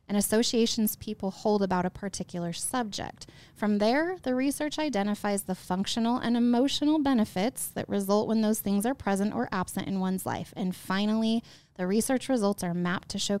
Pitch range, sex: 185-215 Hz, female